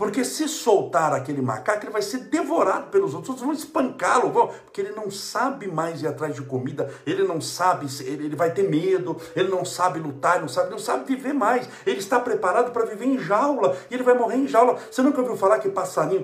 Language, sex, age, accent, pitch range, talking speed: Portuguese, male, 60-79, Brazilian, 170-265 Hz, 225 wpm